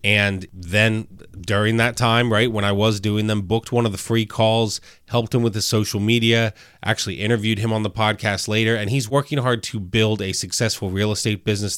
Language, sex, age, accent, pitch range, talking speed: English, male, 30-49, American, 100-115 Hz, 210 wpm